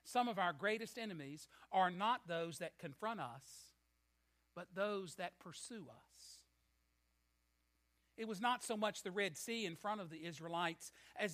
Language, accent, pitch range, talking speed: English, American, 155-240 Hz, 160 wpm